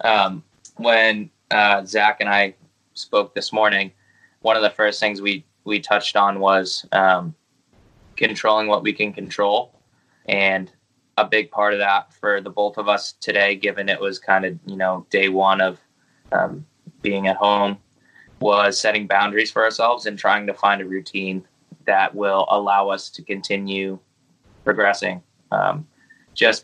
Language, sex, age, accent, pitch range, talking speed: English, male, 20-39, American, 100-105 Hz, 160 wpm